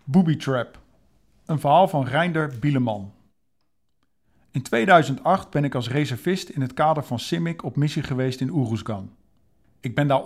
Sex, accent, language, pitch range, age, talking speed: male, Dutch, Dutch, 125-155 Hz, 50-69, 150 wpm